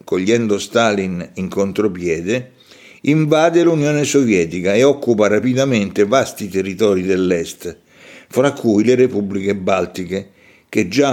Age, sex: 60-79, male